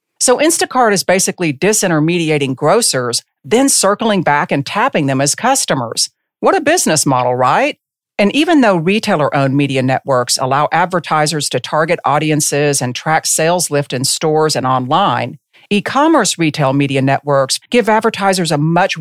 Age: 50-69